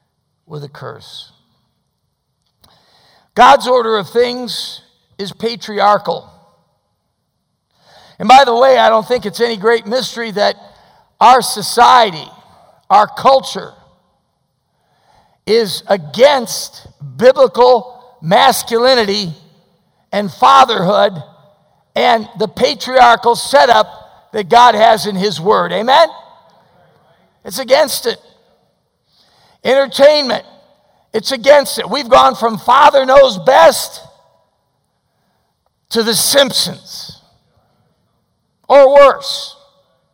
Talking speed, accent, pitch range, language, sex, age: 90 wpm, American, 195-260 Hz, English, male, 50-69